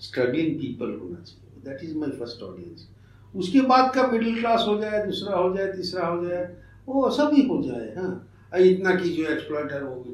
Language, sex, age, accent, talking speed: Hindi, male, 60-79, native, 195 wpm